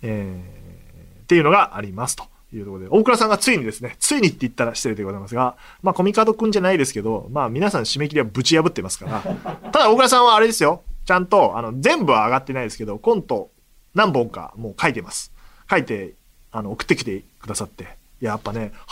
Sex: male